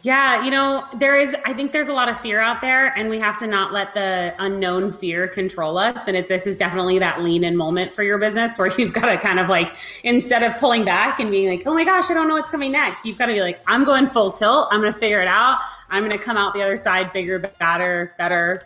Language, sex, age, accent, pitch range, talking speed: English, female, 30-49, American, 190-250 Hz, 275 wpm